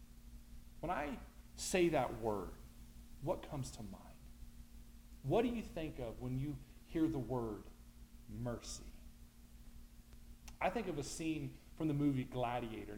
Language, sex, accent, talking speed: English, male, American, 135 wpm